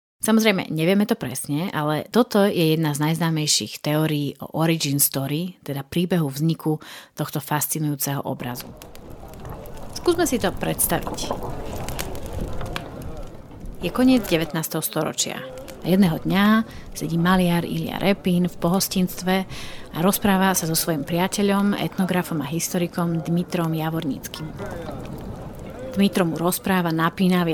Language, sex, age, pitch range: Slovak, female, 30-49, 160-195 Hz